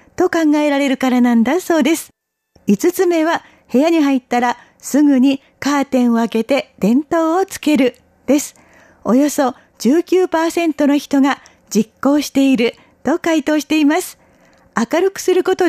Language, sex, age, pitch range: Japanese, female, 40-59, 270-325 Hz